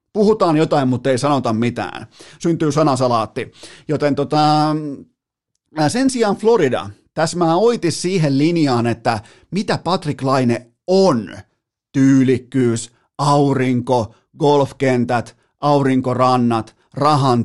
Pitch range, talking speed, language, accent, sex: 120-155 Hz, 95 wpm, Finnish, native, male